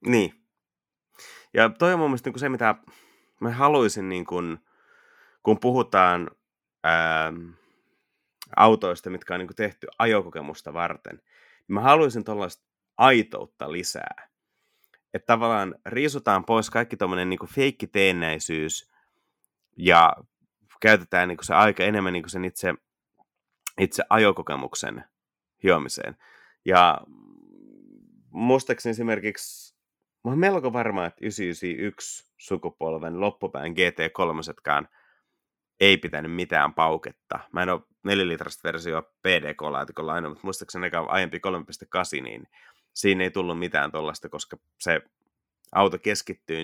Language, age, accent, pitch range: Finnish, 30-49, native, 85-115 Hz